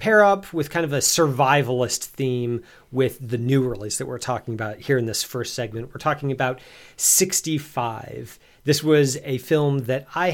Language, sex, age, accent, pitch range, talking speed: English, male, 40-59, American, 120-155 Hz, 180 wpm